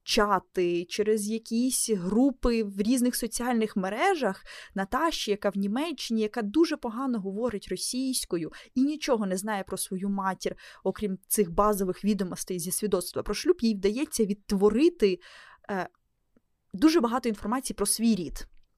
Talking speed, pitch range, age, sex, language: 130 wpm, 200-240 Hz, 20-39, female, Ukrainian